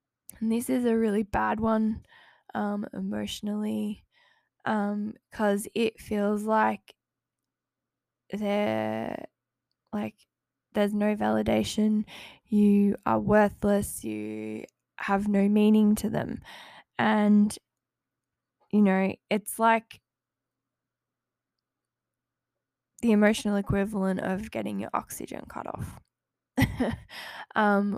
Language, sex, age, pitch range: English, female, 10-29, 190-215 Hz